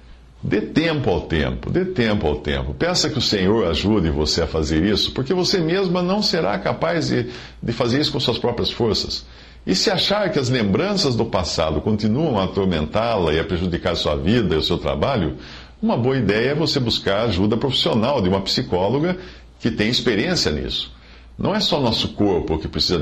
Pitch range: 75-115 Hz